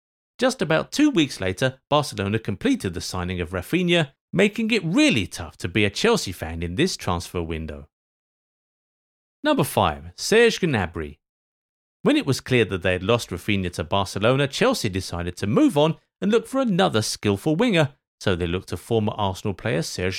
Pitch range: 95-145 Hz